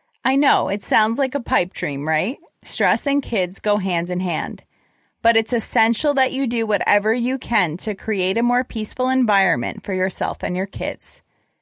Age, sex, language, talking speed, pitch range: 20-39, female, English, 185 wpm, 190-260 Hz